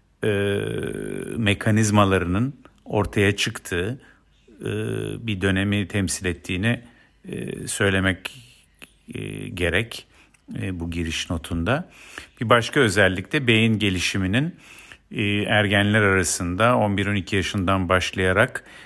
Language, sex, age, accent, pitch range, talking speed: Turkish, male, 50-69, native, 95-120 Hz, 90 wpm